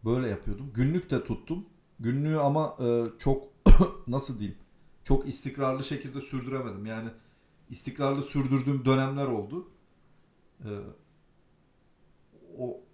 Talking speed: 95 wpm